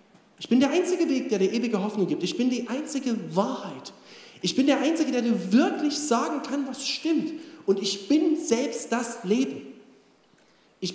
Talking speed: 180 wpm